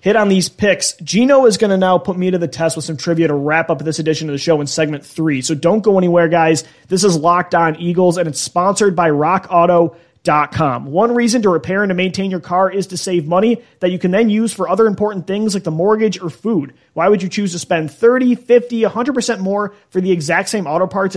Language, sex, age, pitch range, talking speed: English, male, 30-49, 165-200 Hz, 250 wpm